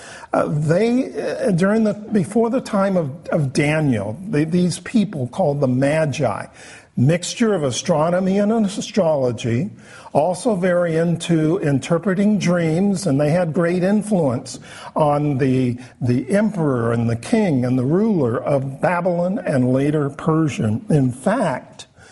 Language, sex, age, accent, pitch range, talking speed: English, male, 50-69, American, 145-200 Hz, 135 wpm